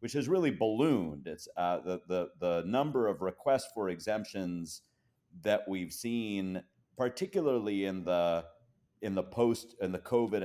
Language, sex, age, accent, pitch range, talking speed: English, male, 40-59, American, 90-115 Hz, 150 wpm